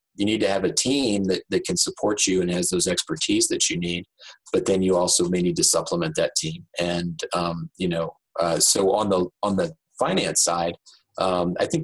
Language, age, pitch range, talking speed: English, 30-49, 90-105 Hz, 220 wpm